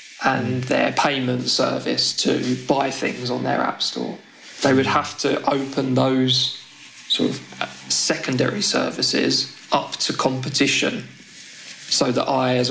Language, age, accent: English, 20-39, British